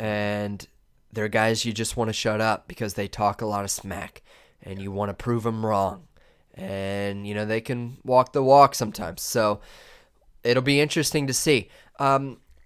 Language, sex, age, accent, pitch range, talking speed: English, male, 20-39, American, 105-130 Hz, 185 wpm